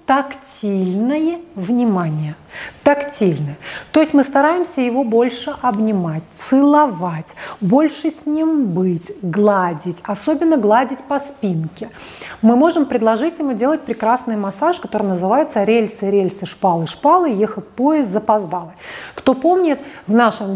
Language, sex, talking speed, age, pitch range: Russian, female, 115 wpm, 30-49, 210-275 Hz